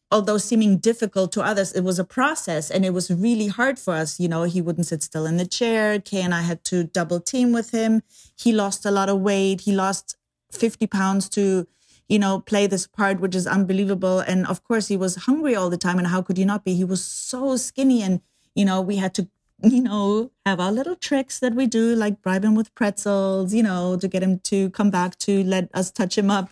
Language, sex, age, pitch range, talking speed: English, female, 30-49, 185-215 Hz, 240 wpm